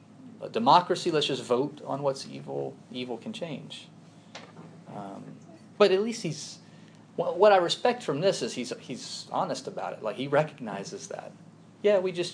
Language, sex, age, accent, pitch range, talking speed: English, male, 30-49, American, 130-190 Hz, 165 wpm